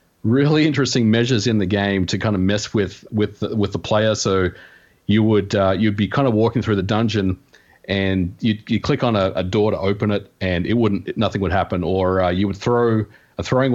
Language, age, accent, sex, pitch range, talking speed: English, 40-59, Australian, male, 95-110 Hz, 225 wpm